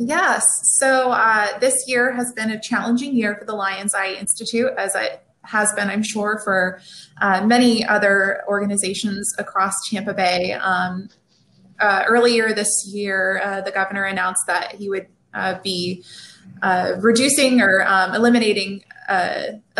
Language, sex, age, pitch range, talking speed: English, female, 20-39, 195-230 Hz, 150 wpm